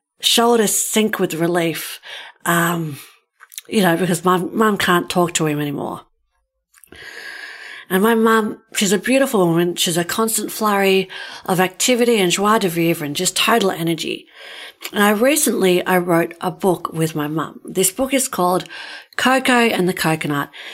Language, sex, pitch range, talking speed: English, female, 170-220 Hz, 160 wpm